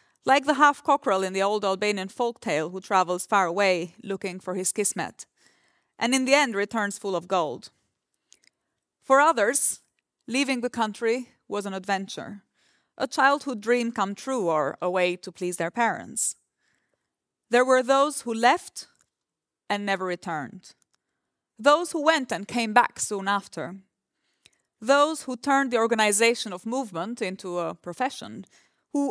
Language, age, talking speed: Dutch, 30-49, 150 wpm